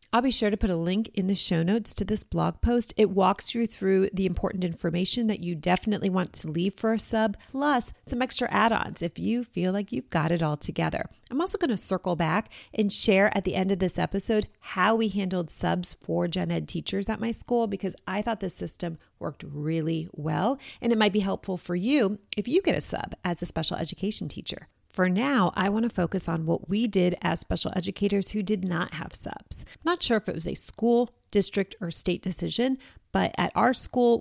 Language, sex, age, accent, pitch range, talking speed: English, female, 30-49, American, 175-215 Hz, 220 wpm